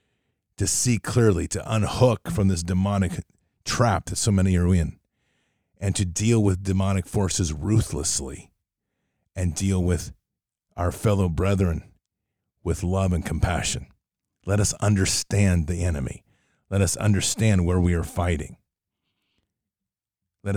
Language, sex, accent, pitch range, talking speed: English, male, American, 90-110 Hz, 130 wpm